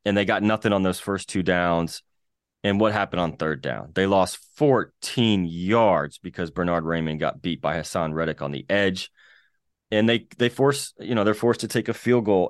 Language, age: English, 30-49